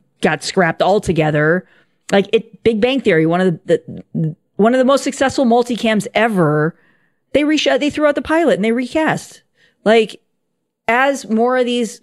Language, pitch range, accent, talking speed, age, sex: English, 160-225 Hz, American, 170 wpm, 40-59, female